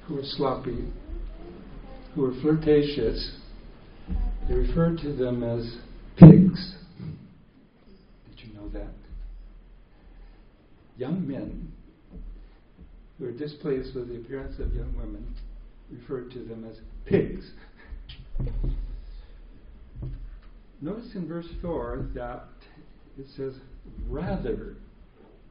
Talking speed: 95 wpm